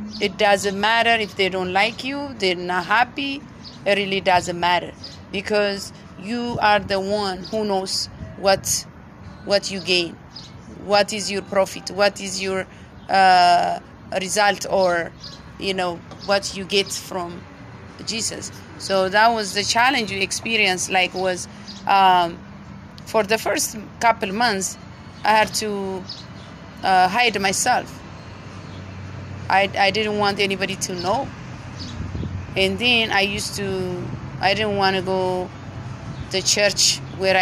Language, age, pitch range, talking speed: English, 30-49, 175-205 Hz, 135 wpm